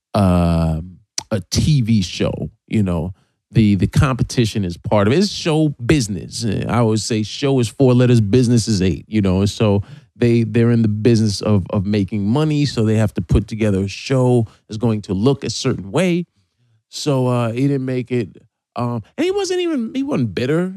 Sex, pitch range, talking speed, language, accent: male, 110-140 Hz, 195 wpm, English, American